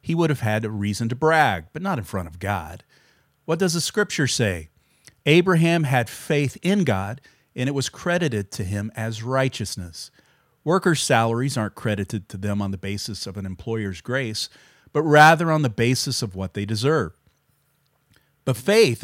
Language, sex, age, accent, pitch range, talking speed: English, male, 40-59, American, 105-145 Hz, 175 wpm